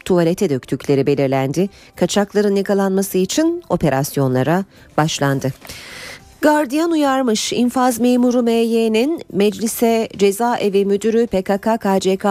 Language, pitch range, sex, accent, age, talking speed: Turkish, 165-235 Hz, female, native, 40-59, 85 wpm